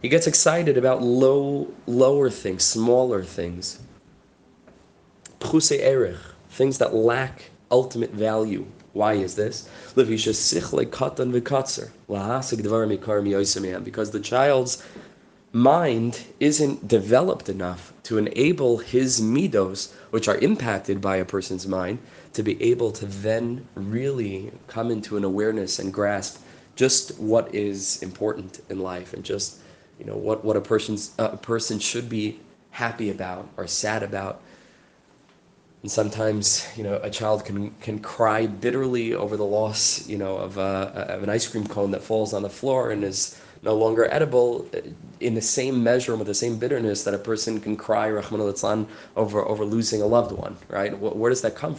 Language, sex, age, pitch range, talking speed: English, male, 20-39, 100-120 Hz, 150 wpm